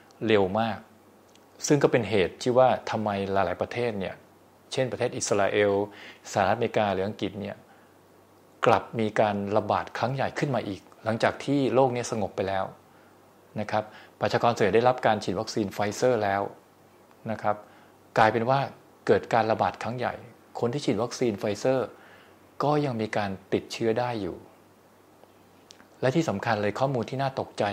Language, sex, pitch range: Thai, male, 100-125 Hz